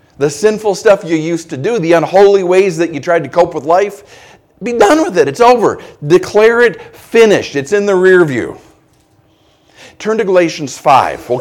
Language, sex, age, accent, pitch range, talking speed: English, male, 50-69, American, 155-200 Hz, 190 wpm